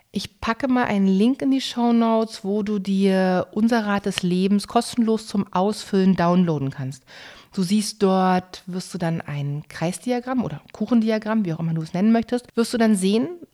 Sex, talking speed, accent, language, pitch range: female, 185 wpm, German, German, 170-225 Hz